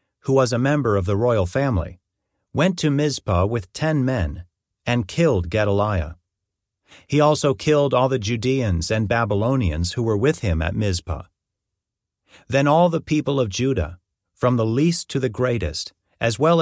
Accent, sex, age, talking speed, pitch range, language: American, male, 40-59, 165 wpm, 95-135 Hz, English